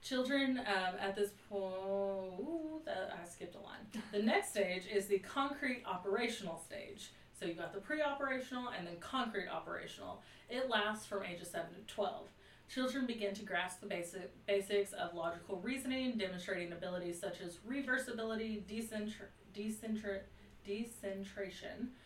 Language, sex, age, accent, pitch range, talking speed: English, female, 30-49, American, 180-215 Hz, 130 wpm